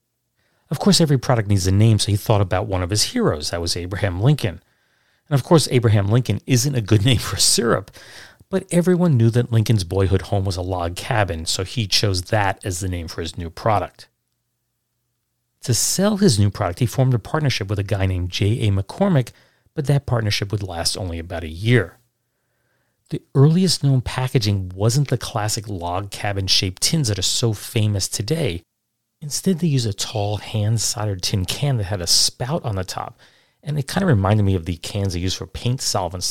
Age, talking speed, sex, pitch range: 40-59, 200 wpm, male, 95-125 Hz